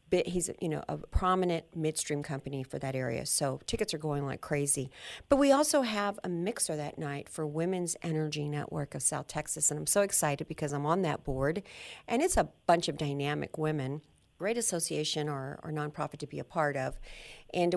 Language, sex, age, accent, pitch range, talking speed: English, female, 50-69, American, 145-170 Hz, 185 wpm